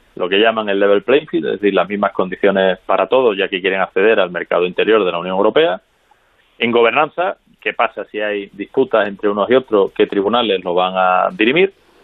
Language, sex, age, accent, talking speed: Spanish, male, 30-49, Spanish, 210 wpm